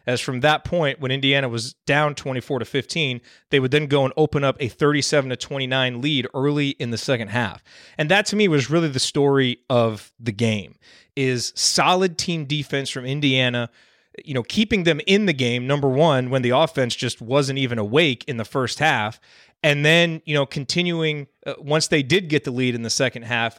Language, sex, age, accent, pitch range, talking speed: English, male, 30-49, American, 125-160 Hz, 205 wpm